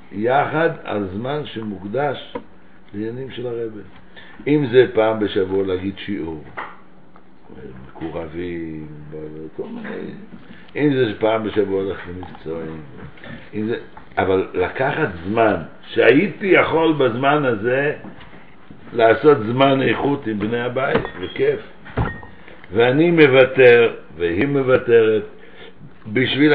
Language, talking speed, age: Hebrew, 95 wpm, 60-79